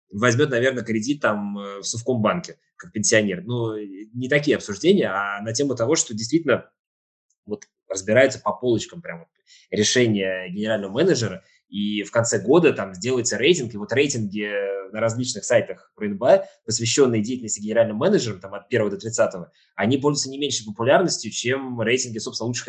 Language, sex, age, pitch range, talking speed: Russian, male, 20-39, 110-150 Hz, 150 wpm